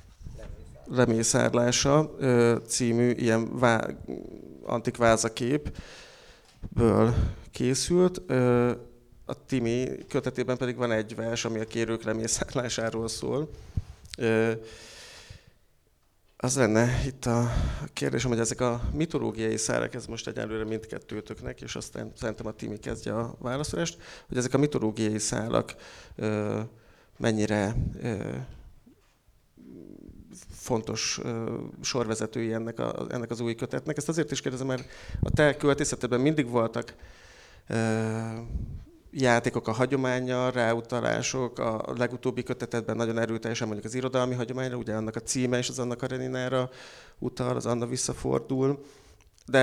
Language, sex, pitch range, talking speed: Hungarian, male, 110-125 Hz, 110 wpm